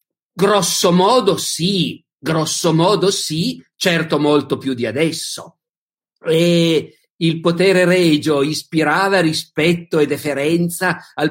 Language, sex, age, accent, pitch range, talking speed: Italian, male, 50-69, native, 145-185 Hz, 105 wpm